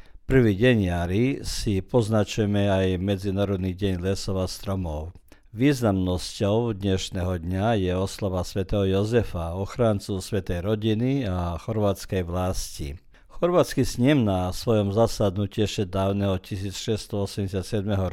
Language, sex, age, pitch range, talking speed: Croatian, male, 50-69, 95-110 Hz, 100 wpm